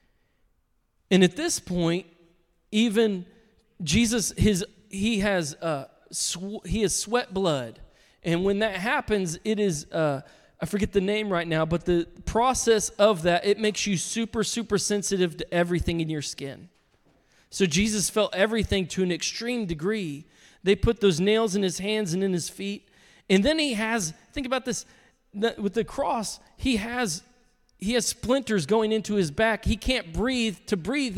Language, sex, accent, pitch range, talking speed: English, male, American, 165-220 Hz, 170 wpm